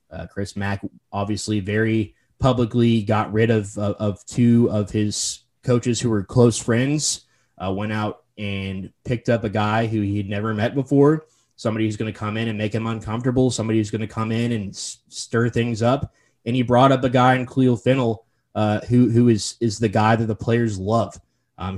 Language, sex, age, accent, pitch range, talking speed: English, male, 20-39, American, 105-125 Hz, 205 wpm